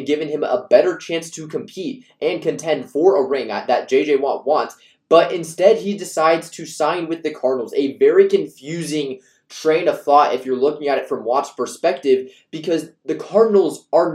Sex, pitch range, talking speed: male, 140-200 Hz, 180 wpm